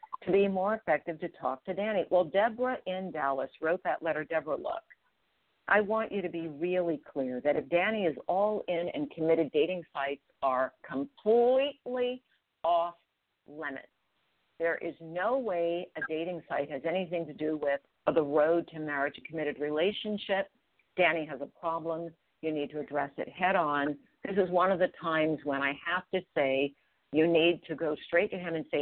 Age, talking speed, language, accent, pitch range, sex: 50-69, 185 wpm, English, American, 155-210 Hz, female